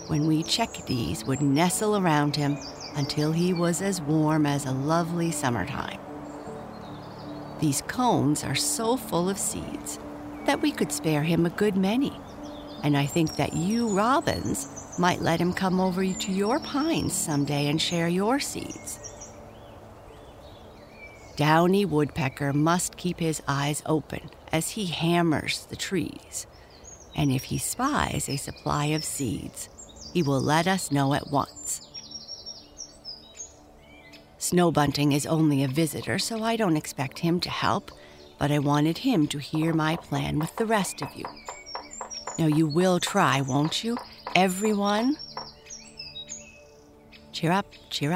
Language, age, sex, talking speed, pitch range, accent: English, 50-69, female, 140 wpm, 140-185 Hz, American